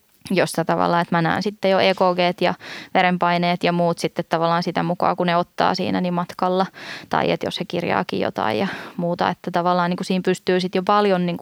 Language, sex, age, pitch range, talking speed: Finnish, female, 20-39, 175-190 Hz, 190 wpm